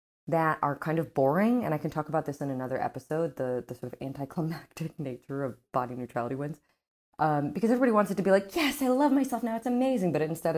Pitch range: 130-175 Hz